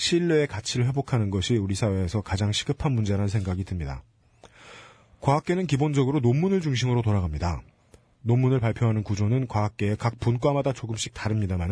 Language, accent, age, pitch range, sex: Korean, native, 40-59, 110-155 Hz, male